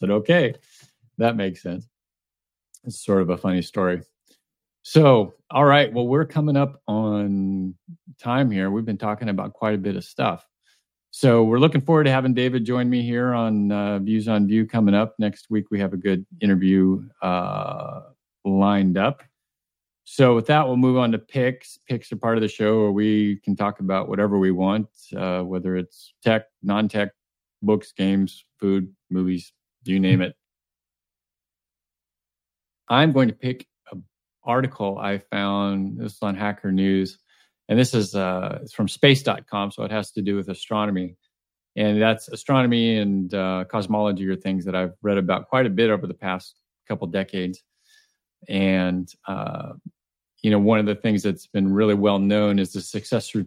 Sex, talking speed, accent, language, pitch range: male, 175 wpm, American, English, 95-115 Hz